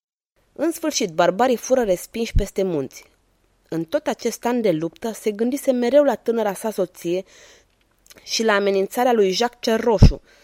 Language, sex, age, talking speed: Romanian, female, 20-39, 150 wpm